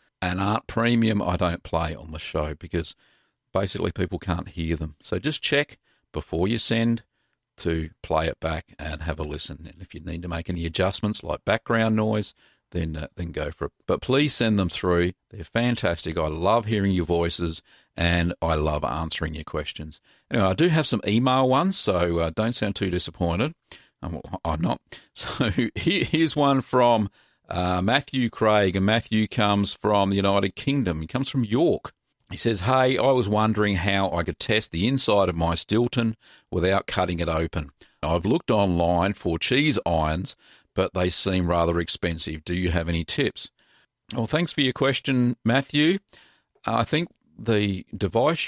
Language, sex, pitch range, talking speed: English, male, 85-115 Hz, 175 wpm